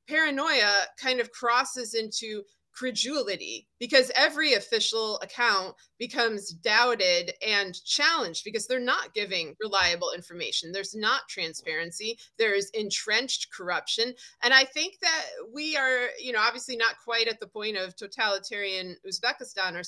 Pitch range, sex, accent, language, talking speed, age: 195-255 Hz, female, American, English, 135 wpm, 30-49